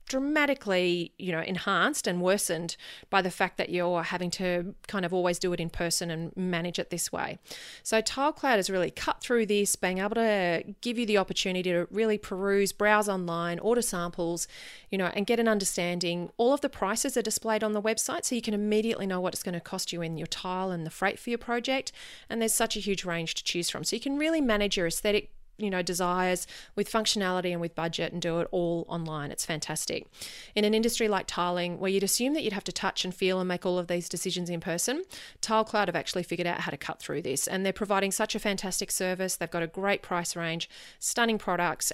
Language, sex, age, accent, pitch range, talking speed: English, female, 30-49, Australian, 175-220 Hz, 230 wpm